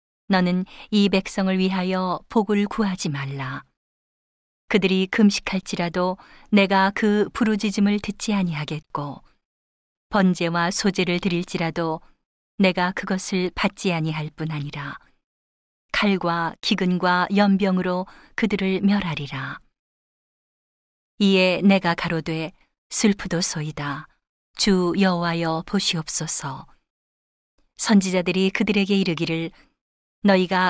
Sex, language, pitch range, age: female, Korean, 165-200 Hz, 40-59